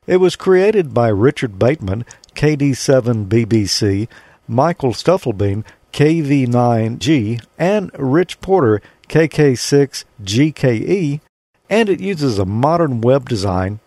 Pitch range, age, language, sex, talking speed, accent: 120-175 Hz, 50-69, English, male, 90 wpm, American